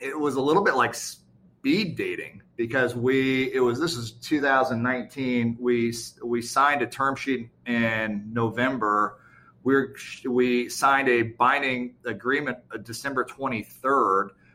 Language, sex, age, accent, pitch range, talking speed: English, male, 30-49, American, 115-135 Hz, 130 wpm